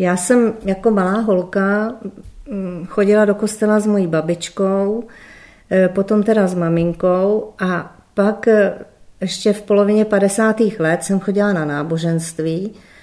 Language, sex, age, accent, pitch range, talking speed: Czech, female, 40-59, native, 175-195 Hz, 120 wpm